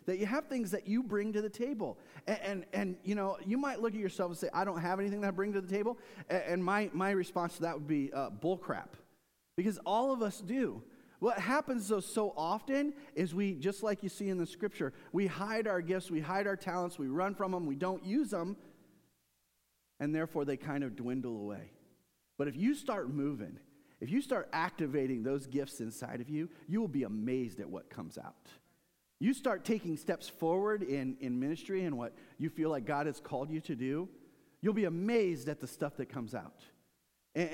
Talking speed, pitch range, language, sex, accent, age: 220 wpm, 140-195 Hz, English, male, American, 40-59